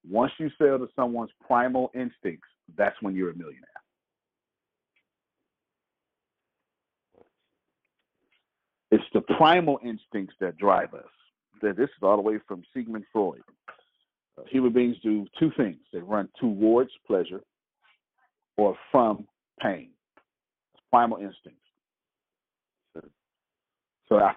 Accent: American